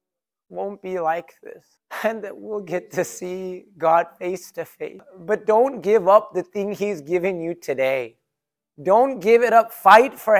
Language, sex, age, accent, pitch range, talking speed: English, male, 30-49, American, 145-195 Hz, 175 wpm